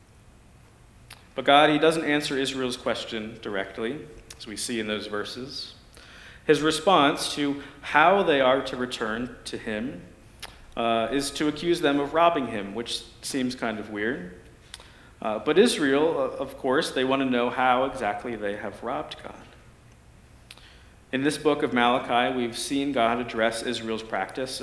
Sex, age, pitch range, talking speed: male, 40-59, 115-145 Hz, 155 wpm